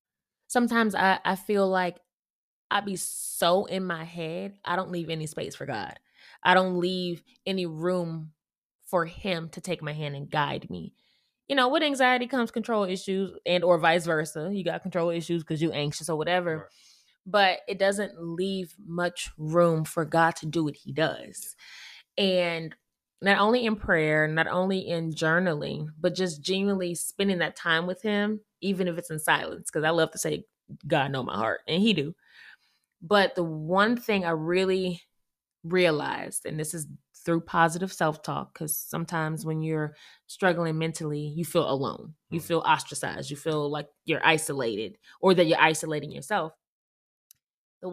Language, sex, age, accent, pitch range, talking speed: English, female, 20-39, American, 160-190 Hz, 170 wpm